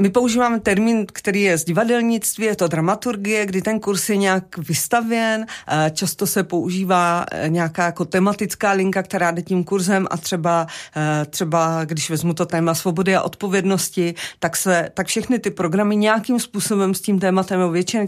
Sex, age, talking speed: female, 40-59, 165 wpm